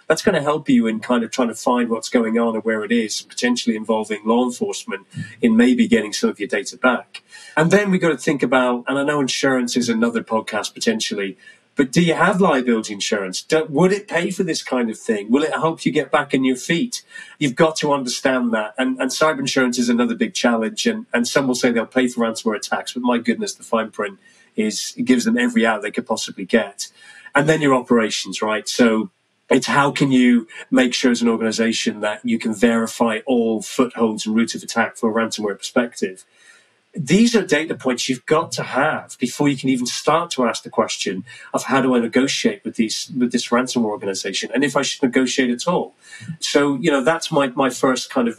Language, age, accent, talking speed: English, 30-49, British, 225 wpm